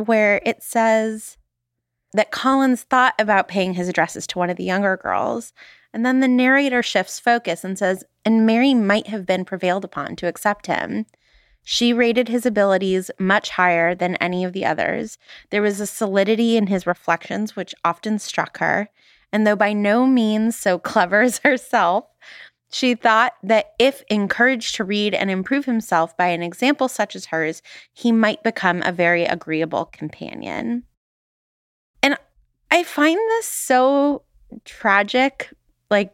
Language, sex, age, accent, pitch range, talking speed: English, female, 20-39, American, 175-240 Hz, 160 wpm